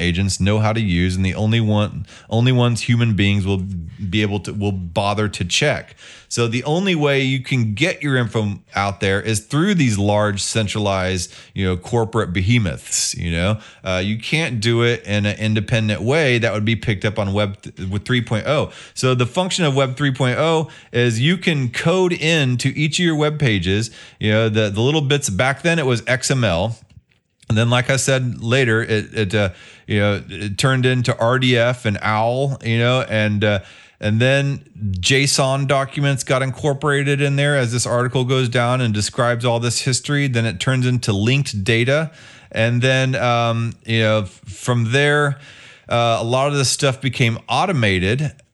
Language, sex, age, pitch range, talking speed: English, male, 30-49, 105-135 Hz, 185 wpm